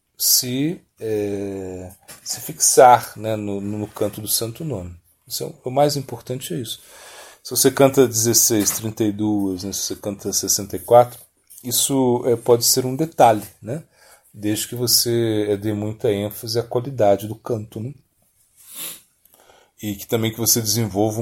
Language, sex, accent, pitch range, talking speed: Portuguese, male, Brazilian, 100-125 Hz, 155 wpm